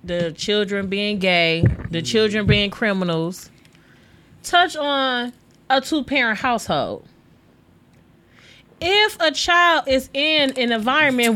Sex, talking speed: female, 110 wpm